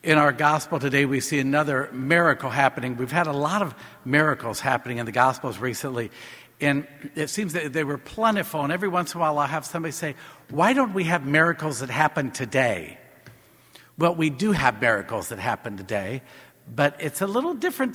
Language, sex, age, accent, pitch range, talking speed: English, male, 50-69, American, 140-185 Hz, 195 wpm